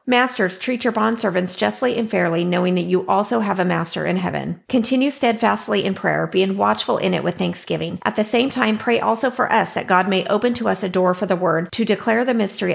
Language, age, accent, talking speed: English, 30-49, American, 230 wpm